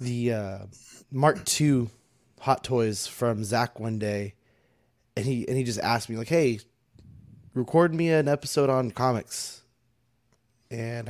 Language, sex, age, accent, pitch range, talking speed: English, male, 20-39, American, 115-135 Hz, 140 wpm